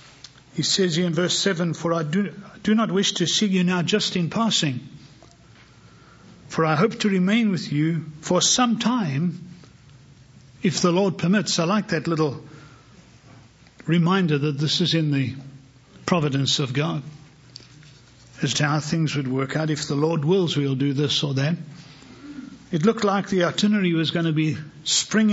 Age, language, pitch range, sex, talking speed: 60-79, English, 145-185 Hz, male, 170 wpm